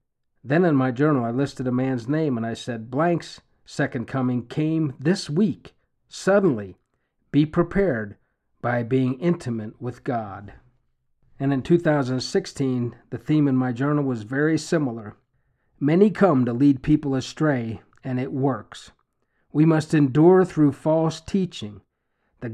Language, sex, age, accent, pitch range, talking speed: English, male, 50-69, American, 125-165 Hz, 140 wpm